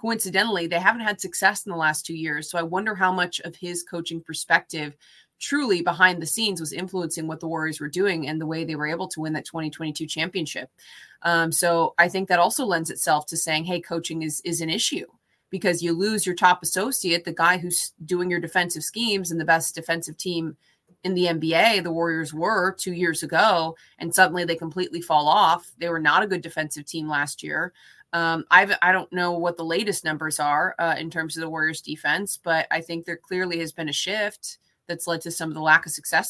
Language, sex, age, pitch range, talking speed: English, female, 20-39, 160-185 Hz, 220 wpm